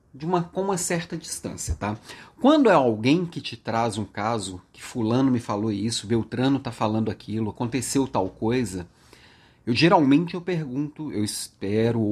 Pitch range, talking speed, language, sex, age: 115-165 Hz, 165 wpm, Portuguese, male, 40-59